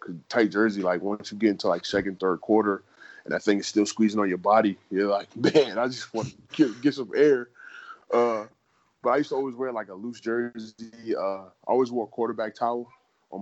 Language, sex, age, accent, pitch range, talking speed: English, male, 20-39, American, 100-115 Hz, 225 wpm